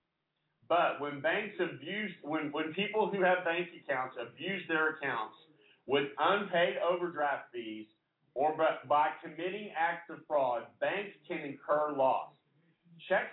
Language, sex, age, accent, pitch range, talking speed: English, male, 50-69, American, 150-185 Hz, 130 wpm